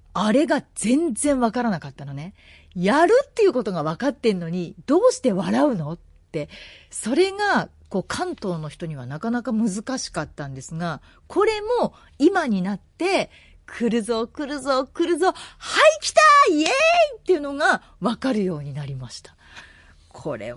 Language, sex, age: Japanese, female, 40-59